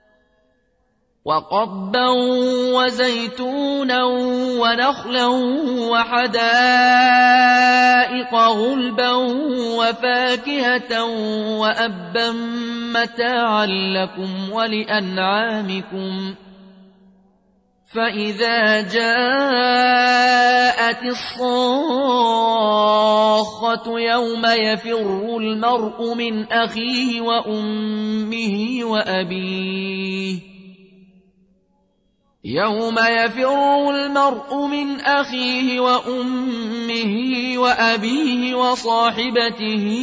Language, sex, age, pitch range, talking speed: Arabic, male, 30-49, 215-245 Hz, 40 wpm